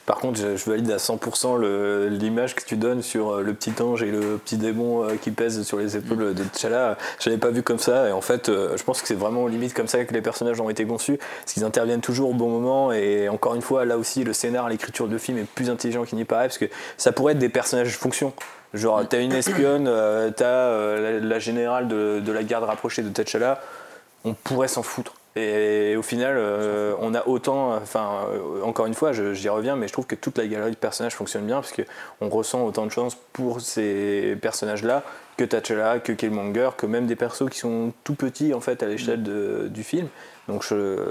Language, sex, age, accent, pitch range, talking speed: French, male, 20-39, French, 105-125 Hz, 235 wpm